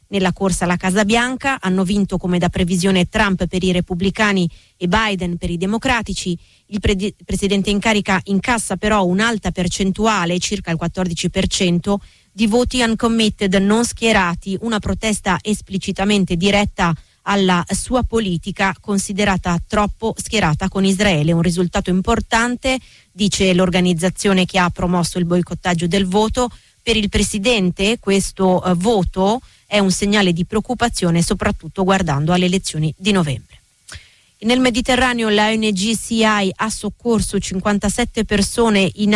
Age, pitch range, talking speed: 30-49, 185-215 Hz, 130 wpm